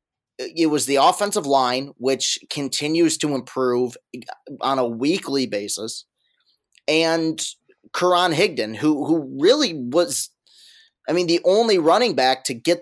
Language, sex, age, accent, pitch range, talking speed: English, male, 30-49, American, 125-160 Hz, 130 wpm